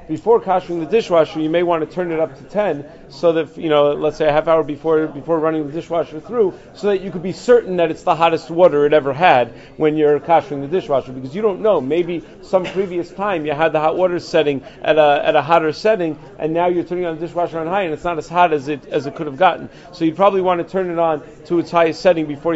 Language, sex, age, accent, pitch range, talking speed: English, male, 40-59, American, 145-170 Hz, 270 wpm